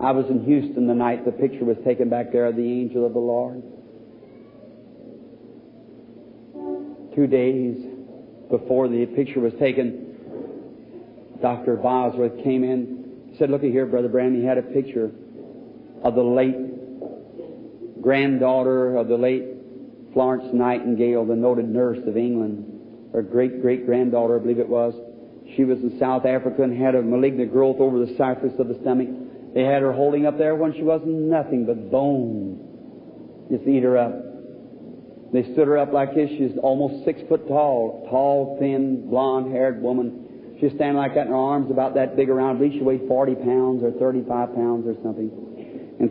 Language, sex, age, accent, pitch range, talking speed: English, male, 50-69, American, 120-135 Hz, 165 wpm